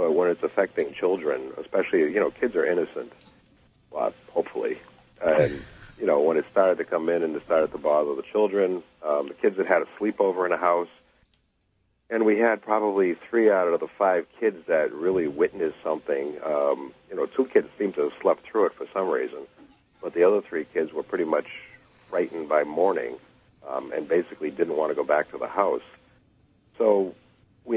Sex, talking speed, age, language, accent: male, 195 wpm, 50-69, English, American